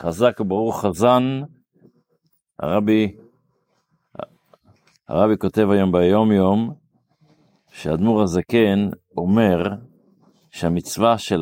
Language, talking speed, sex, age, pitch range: Hebrew, 75 wpm, male, 50-69, 90-120 Hz